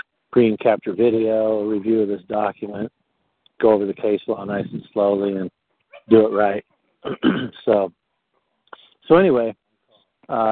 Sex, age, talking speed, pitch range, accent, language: male, 50-69, 125 wpm, 110-125 Hz, American, English